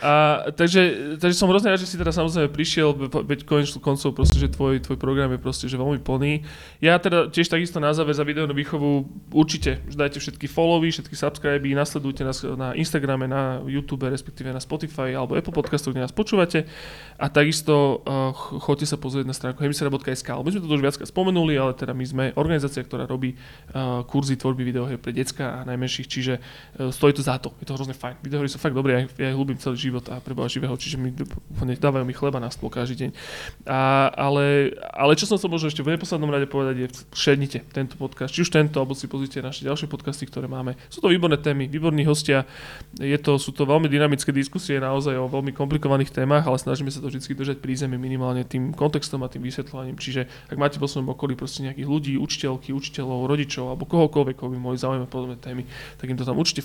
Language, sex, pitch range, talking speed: Slovak, male, 130-150 Hz, 210 wpm